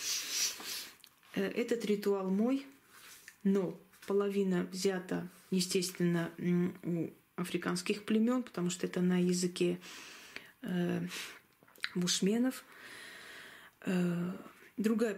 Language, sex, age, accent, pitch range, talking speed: Russian, female, 20-39, native, 180-205 Hz, 65 wpm